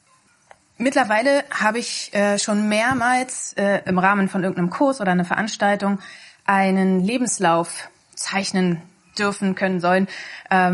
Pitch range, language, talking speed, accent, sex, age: 185-225 Hz, German, 105 wpm, German, female, 30-49